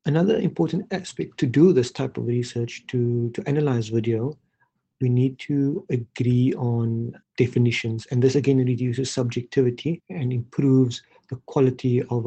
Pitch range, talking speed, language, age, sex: 120-135 Hz, 140 wpm, English, 50-69, male